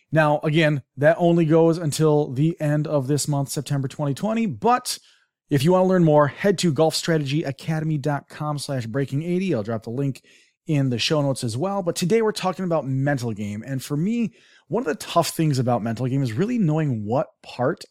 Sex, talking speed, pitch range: male, 195 wpm, 135-180 Hz